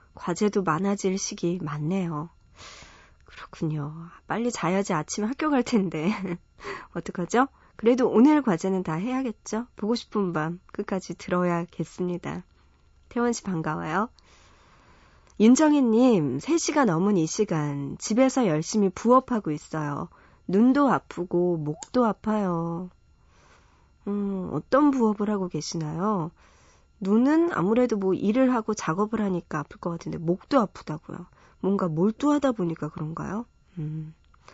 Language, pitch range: Korean, 170-235 Hz